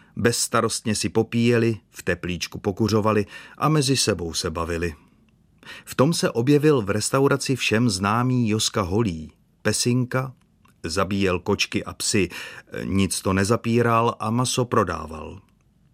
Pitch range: 100-125 Hz